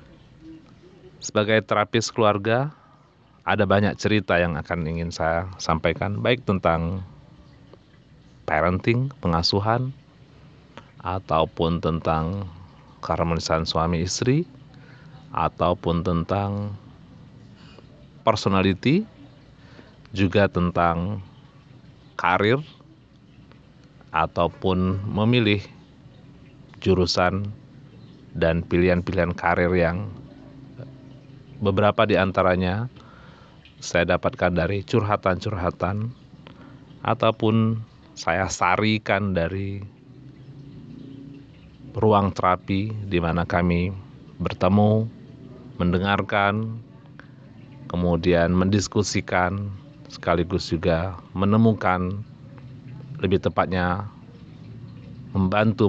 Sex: male